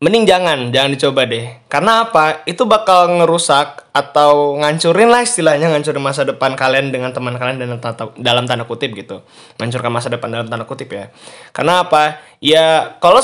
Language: Indonesian